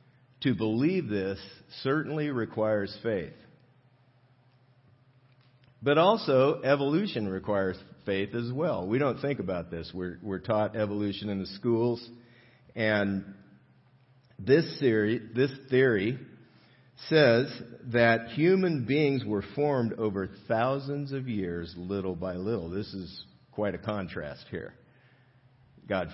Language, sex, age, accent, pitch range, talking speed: English, male, 50-69, American, 100-130 Hz, 110 wpm